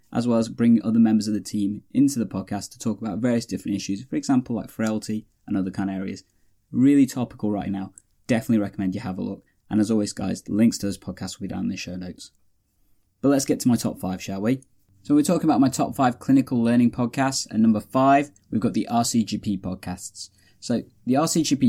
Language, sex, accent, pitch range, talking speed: English, male, British, 100-130 Hz, 230 wpm